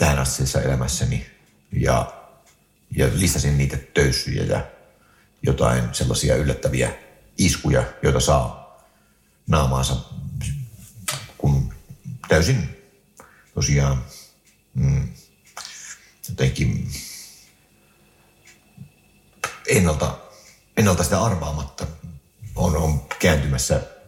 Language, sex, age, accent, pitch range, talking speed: Finnish, male, 60-79, native, 70-90 Hz, 65 wpm